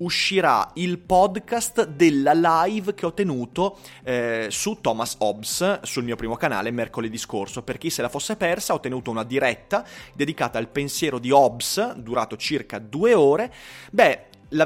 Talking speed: 160 wpm